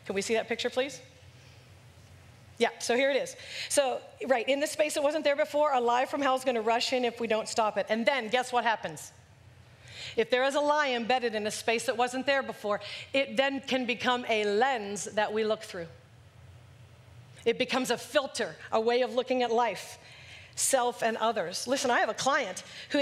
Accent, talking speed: American, 210 wpm